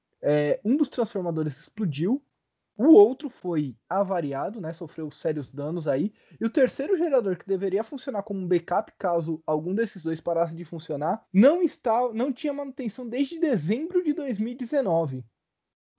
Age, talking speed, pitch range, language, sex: 20-39, 145 wpm, 165-240 Hz, Portuguese, male